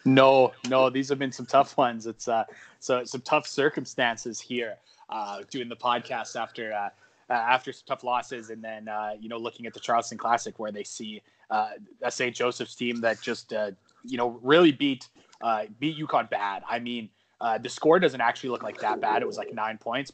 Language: English